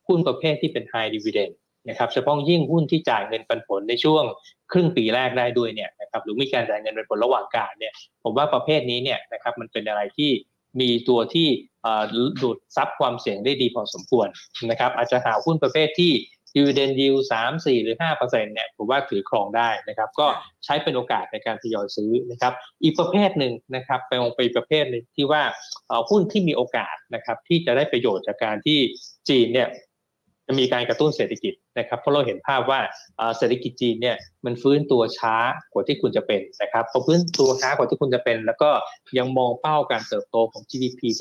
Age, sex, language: 20-39, male, Thai